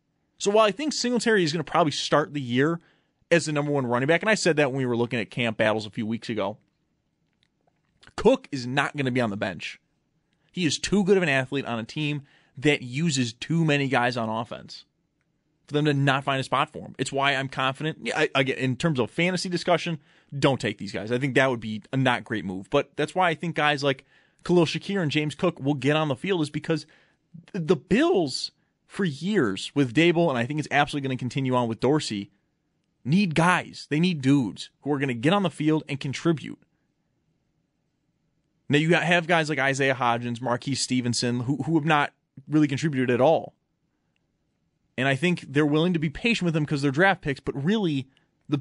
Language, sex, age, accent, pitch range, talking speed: English, male, 30-49, American, 130-165 Hz, 215 wpm